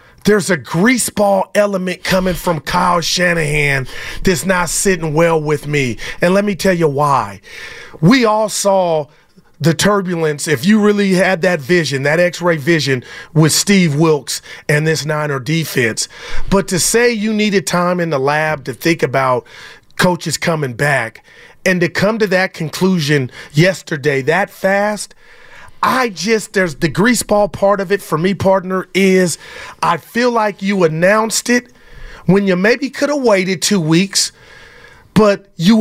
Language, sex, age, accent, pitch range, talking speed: English, male, 30-49, American, 160-200 Hz, 155 wpm